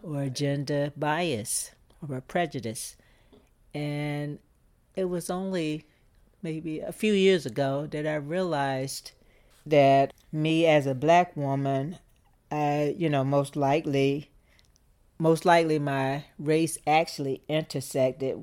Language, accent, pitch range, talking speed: English, American, 130-145 Hz, 110 wpm